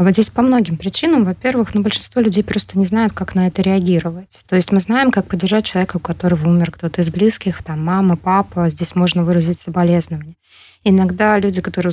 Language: Russian